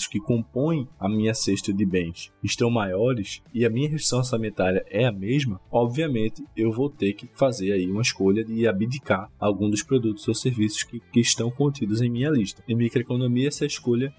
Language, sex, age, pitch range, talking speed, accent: Portuguese, male, 20-39, 105-135 Hz, 185 wpm, Brazilian